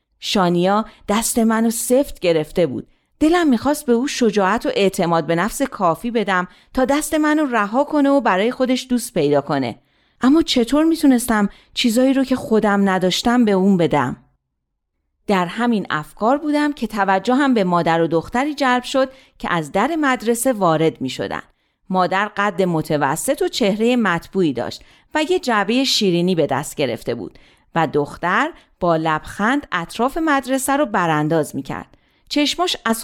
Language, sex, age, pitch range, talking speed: Persian, female, 40-59, 185-265 Hz, 155 wpm